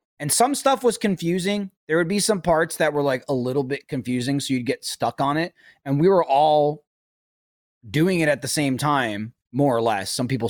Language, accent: English, American